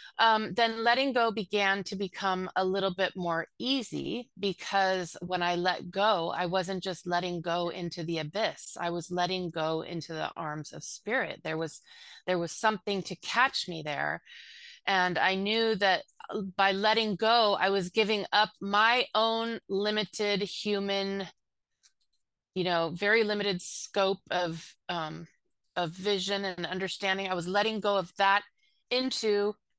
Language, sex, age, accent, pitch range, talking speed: English, female, 30-49, American, 180-215 Hz, 155 wpm